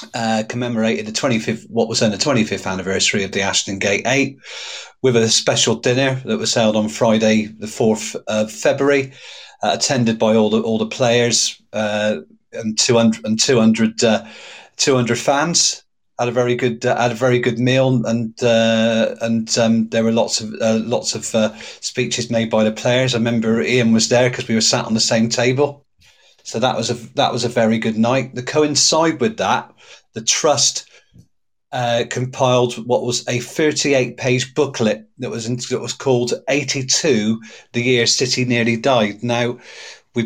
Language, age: English, 40-59